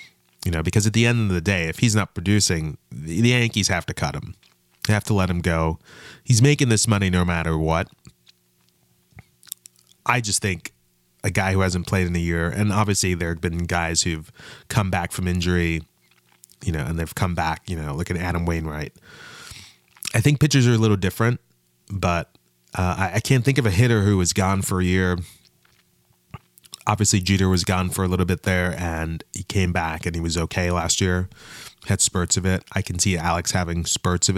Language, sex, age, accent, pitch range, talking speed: English, male, 30-49, American, 85-100 Hz, 205 wpm